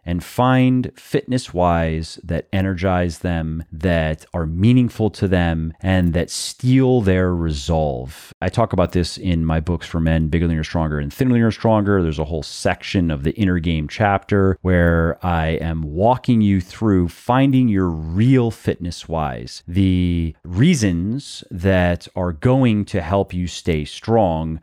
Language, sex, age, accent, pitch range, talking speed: English, male, 30-49, American, 85-120 Hz, 155 wpm